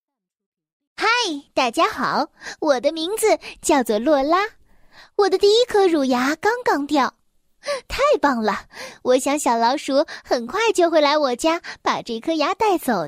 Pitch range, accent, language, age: 265-375 Hz, native, Chinese, 20-39